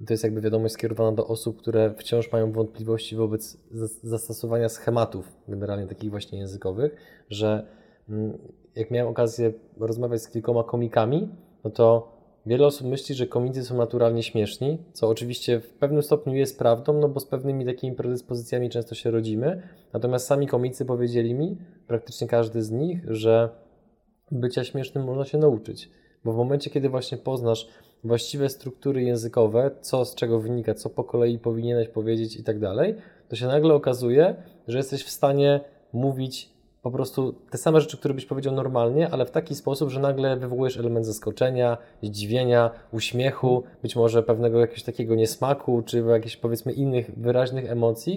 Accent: native